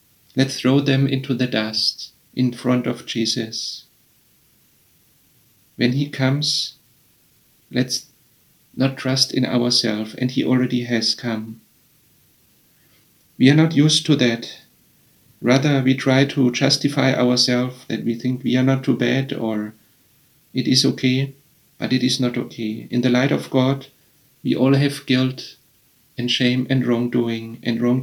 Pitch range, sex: 120-135 Hz, male